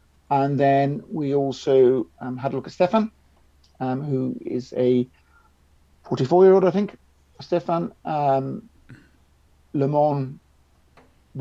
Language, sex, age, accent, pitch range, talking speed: English, male, 50-69, British, 115-140 Hz, 120 wpm